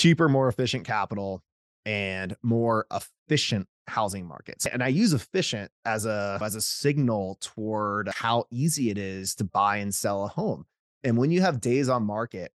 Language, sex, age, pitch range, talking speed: English, male, 30-49, 100-130 Hz, 165 wpm